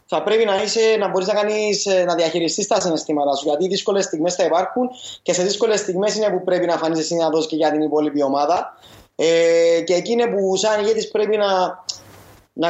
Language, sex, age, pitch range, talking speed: English, male, 20-39, 170-215 Hz, 195 wpm